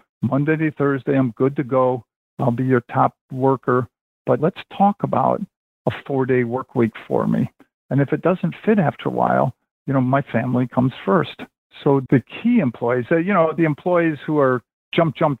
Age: 50-69